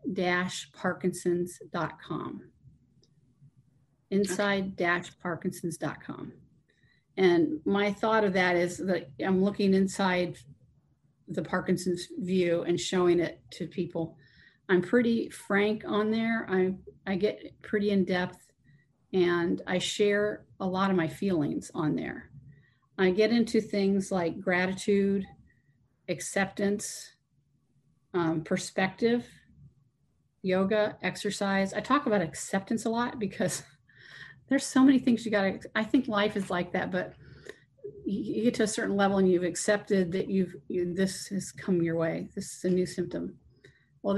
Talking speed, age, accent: 130 wpm, 40-59, American